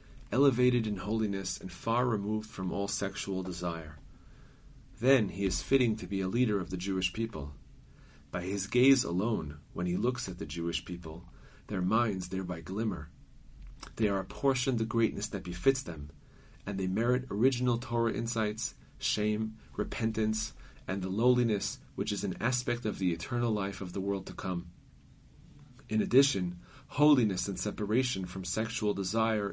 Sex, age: male, 40-59